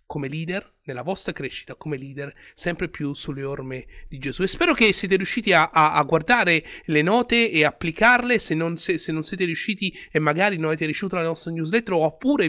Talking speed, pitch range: 190 wpm, 145-190 Hz